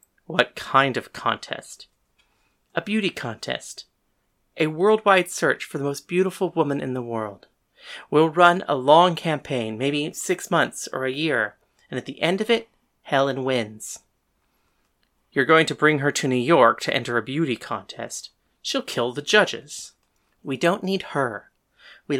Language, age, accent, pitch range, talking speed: English, 40-59, American, 130-175 Hz, 160 wpm